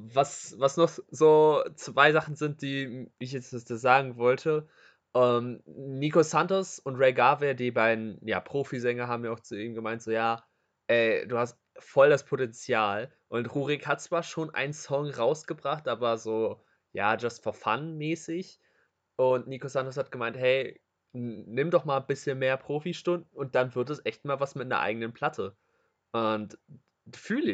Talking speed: 170 wpm